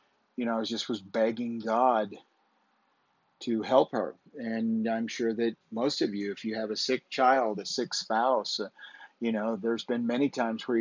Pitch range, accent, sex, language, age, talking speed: 110-125 Hz, American, male, English, 50-69, 190 wpm